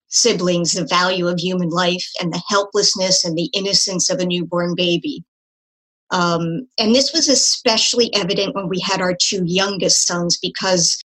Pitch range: 175-210 Hz